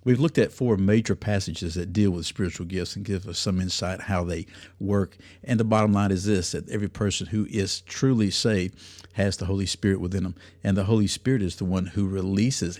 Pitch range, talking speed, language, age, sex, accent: 95-115 Hz, 220 wpm, English, 50-69, male, American